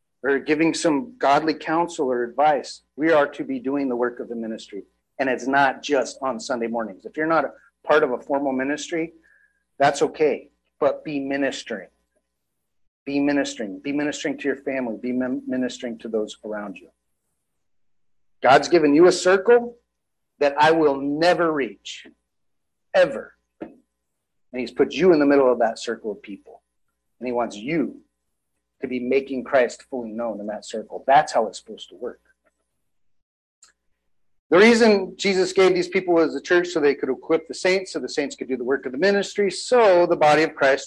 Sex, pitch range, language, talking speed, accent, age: male, 125-180 Hz, English, 180 wpm, American, 40-59